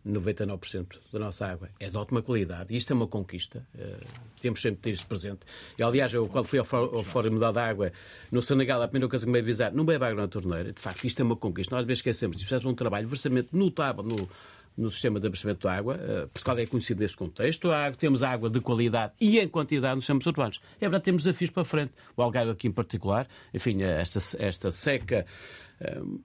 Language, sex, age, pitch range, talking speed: Portuguese, male, 50-69, 110-155 Hz, 225 wpm